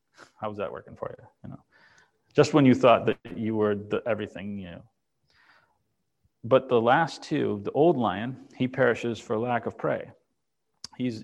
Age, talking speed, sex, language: 30-49, 170 wpm, male, English